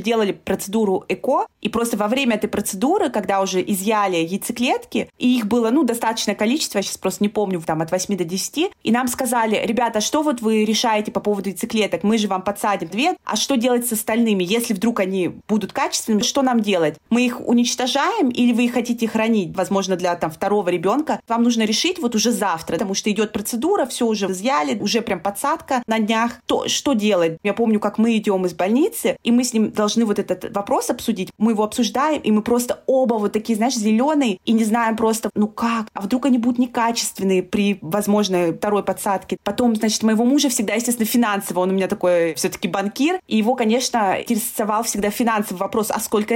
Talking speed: 205 wpm